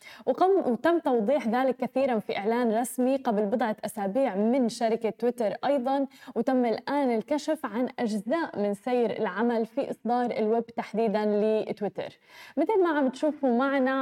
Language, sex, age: Arabic, female, 10-29